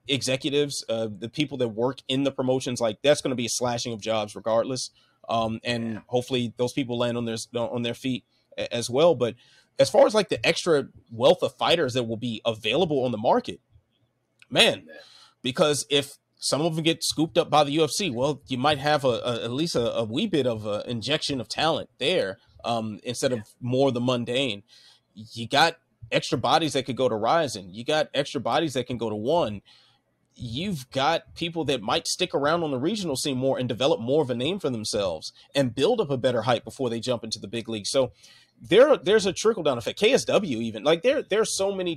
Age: 30-49